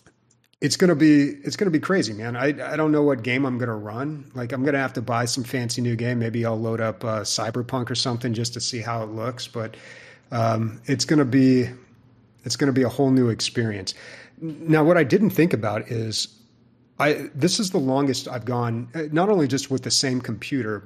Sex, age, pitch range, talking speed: male, 30-49, 115-140 Hz, 235 wpm